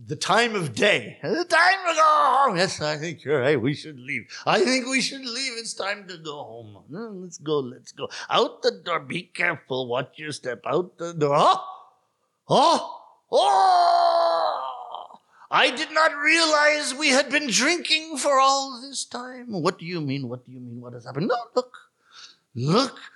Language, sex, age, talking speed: English, male, 50-69, 190 wpm